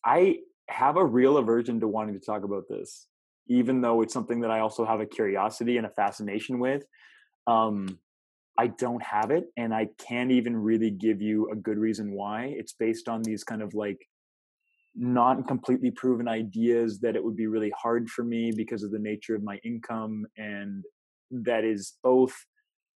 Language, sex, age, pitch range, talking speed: English, male, 20-39, 105-125 Hz, 185 wpm